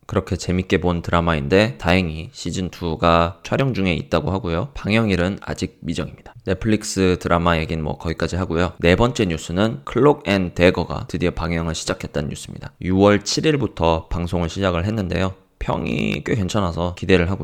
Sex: male